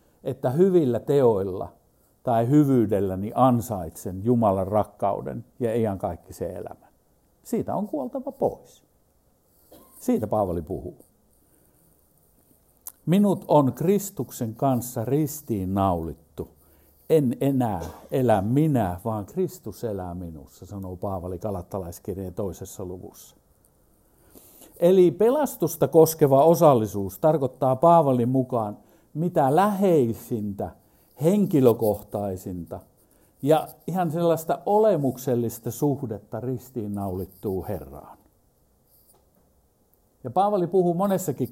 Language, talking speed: Finnish, 80 wpm